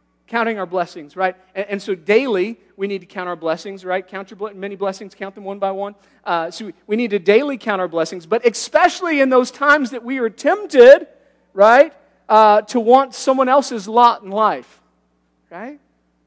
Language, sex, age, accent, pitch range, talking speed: English, male, 40-59, American, 175-220 Hz, 195 wpm